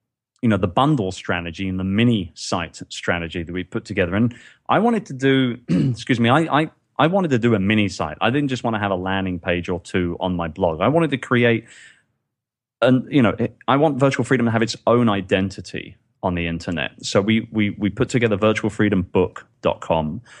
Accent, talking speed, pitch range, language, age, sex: British, 210 wpm, 95-120 Hz, English, 30-49, male